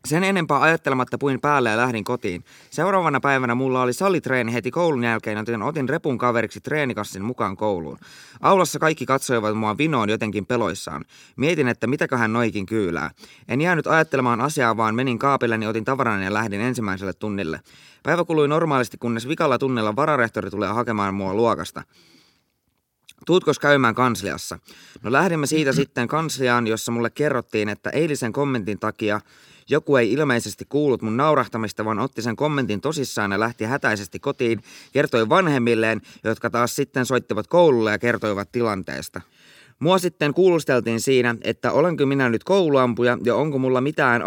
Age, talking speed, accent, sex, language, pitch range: 20-39, 155 wpm, native, male, Finnish, 110-140 Hz